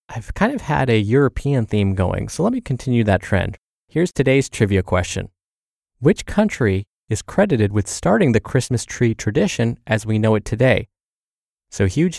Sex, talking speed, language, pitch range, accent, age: male, 170 wpm, English, 100-140 Hz, American, 20-39